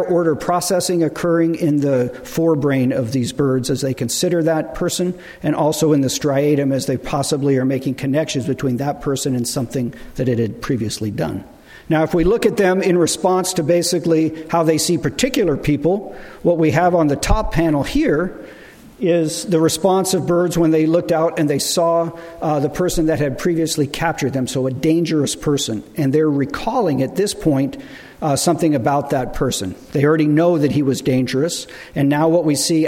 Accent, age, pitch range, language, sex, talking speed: American, 50-69, 135-165 Hz, English, male, 190 wpm